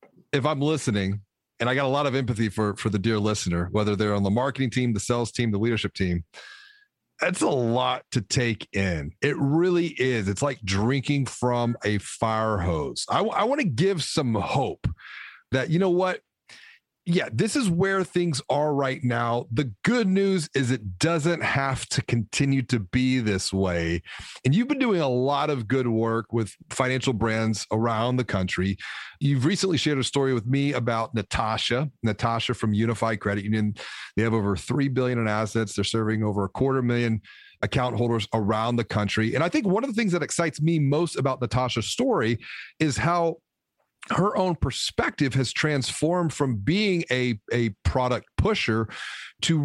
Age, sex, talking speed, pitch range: 40-59, male, 180 wpm, 110-150 Hz